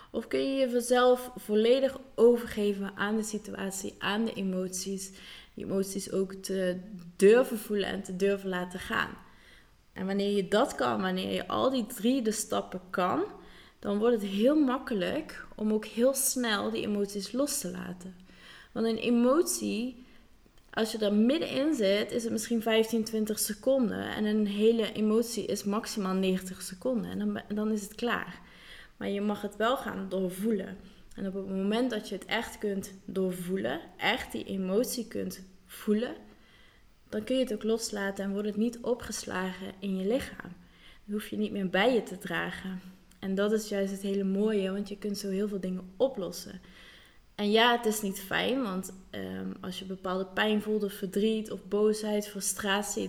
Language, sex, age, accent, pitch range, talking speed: Dutch, female, 20-39, Dutch, 195-225 Hz, 175 wpm